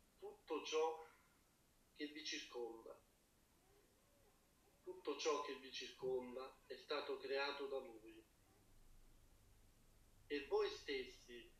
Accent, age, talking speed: native, 40-59, 90 wpm